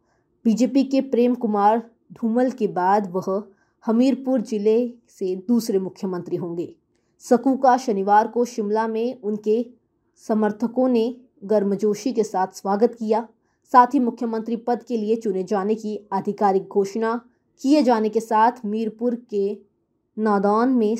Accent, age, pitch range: native, 20-39, 195-235 Hz